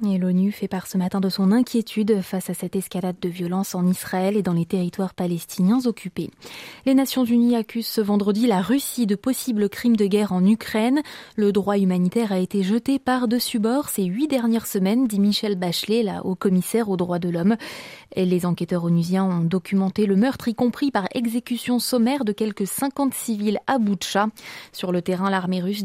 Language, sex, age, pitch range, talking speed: French, female, 20-39, 190-240 Hz, 195 wpm